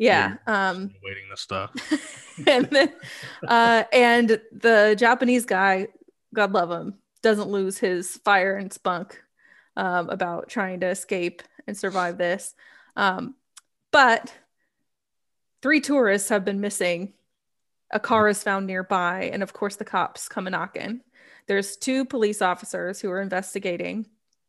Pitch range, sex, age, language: 190-230 Hz, female, 20-39, English